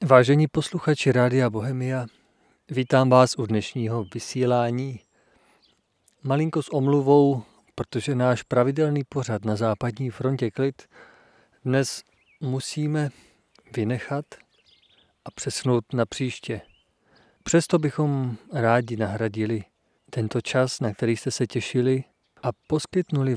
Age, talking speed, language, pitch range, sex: 40-59, 105 wpm, Czech, 120-145 Hz, male